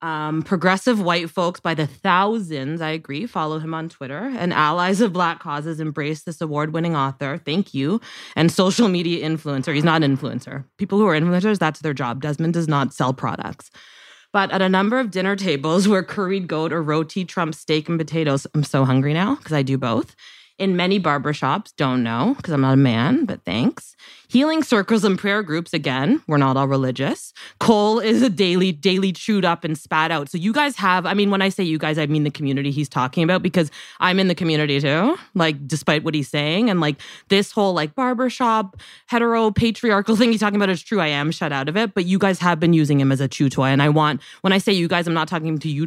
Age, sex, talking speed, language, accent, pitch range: 20-39, female, 225 wpm, English, American, 150-190 Hz